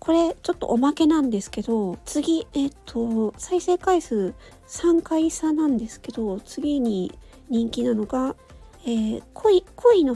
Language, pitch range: Japanese, 230-325 Hz